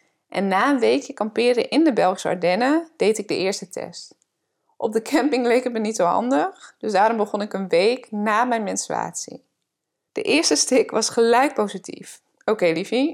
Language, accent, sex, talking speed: English, Dutch, female, 185 wpm